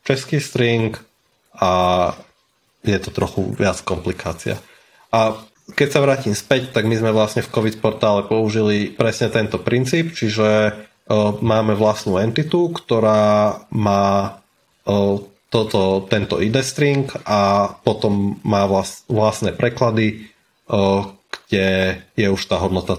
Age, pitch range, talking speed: 30-49, 105-135 Hz, 125 wpm